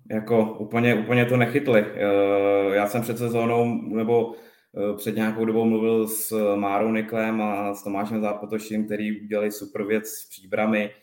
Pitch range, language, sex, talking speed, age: 105-115 Hz, Czech, male, 145 wpm, 20-39